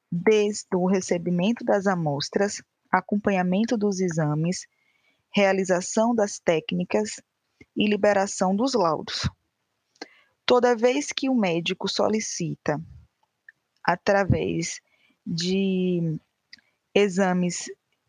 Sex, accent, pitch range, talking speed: female, Brazilian, 180-215 Hz, 80 wpm